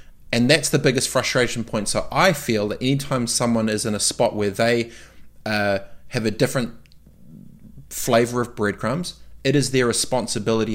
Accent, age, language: Australian, 20-39, English